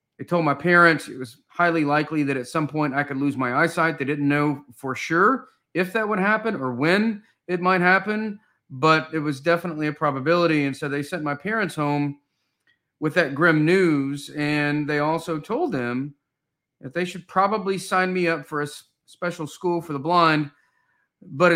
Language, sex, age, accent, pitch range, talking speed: English, male, 40-59, American, 135-165 Hz, 190 wpm